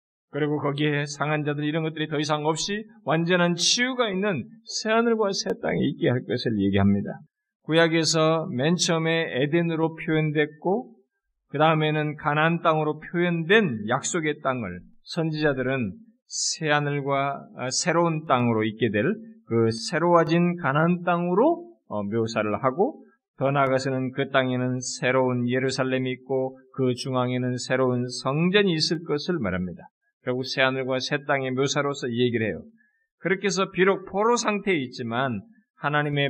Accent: native